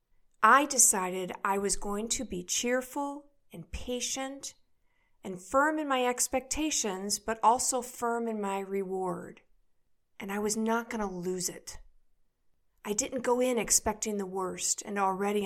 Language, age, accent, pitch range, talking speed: English, 50-69, American, 200-255 Hz, 150 wpm